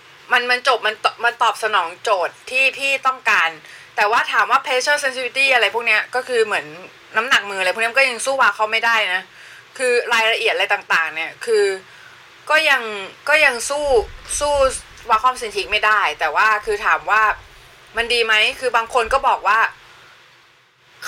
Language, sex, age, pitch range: Thai, female, 20-39, 205-270 Hz